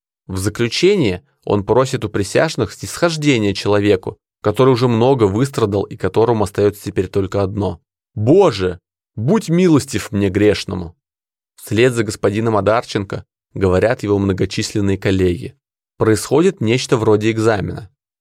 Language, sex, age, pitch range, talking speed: Russian, male, 20-39, 100-125 Hz, 115 wpm